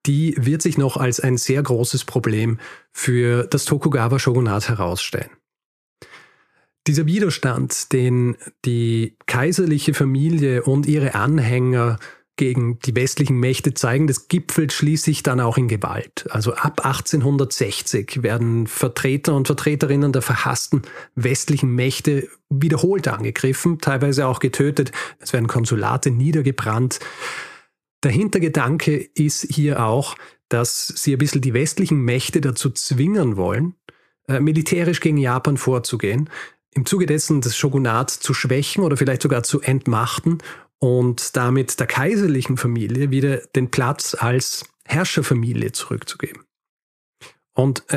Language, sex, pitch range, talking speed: German, male, 125-150 Hz, 125 wpm